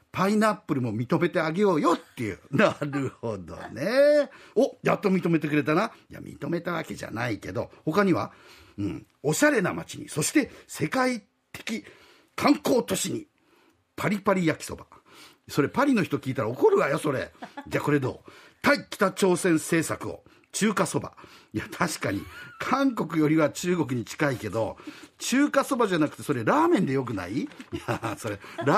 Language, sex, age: Japanese, male, 50-69